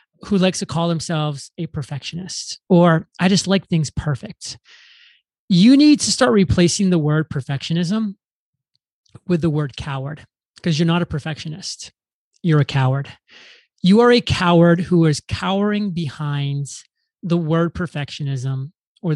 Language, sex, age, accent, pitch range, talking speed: English, male, 30-49, American, 150-185 Hz, 140 wpm